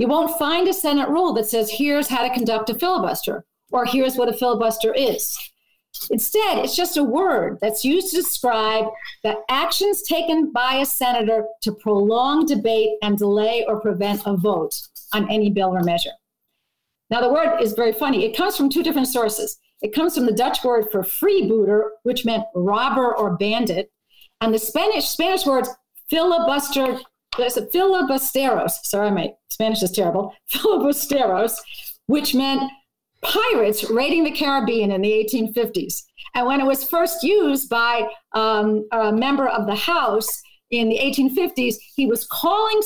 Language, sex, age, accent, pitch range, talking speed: English, female, 50-69, American, 225-335 Hz, 165 wpm